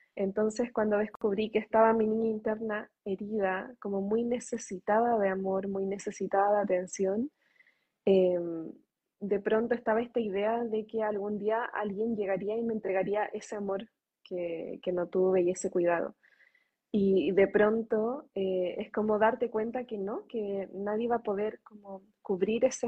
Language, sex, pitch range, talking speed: Spanish, female, 195-225 Hz, 155 wpm